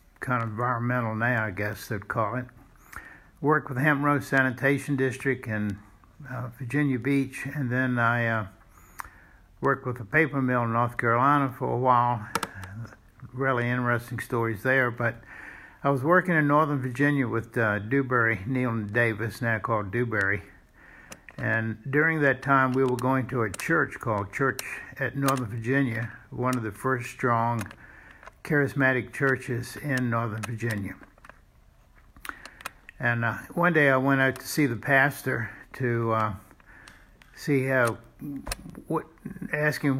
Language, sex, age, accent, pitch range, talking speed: English, male, 60-79, American, 115-135 Hz, 140 wpm